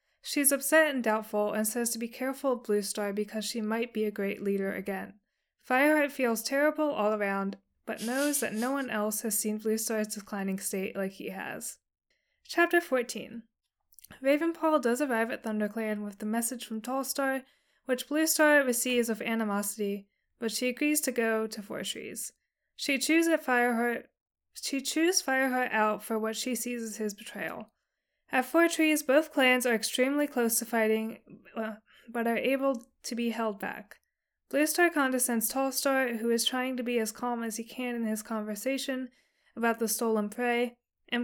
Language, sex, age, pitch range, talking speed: English, female, 20-39, 220-265 Hz, 175 wpm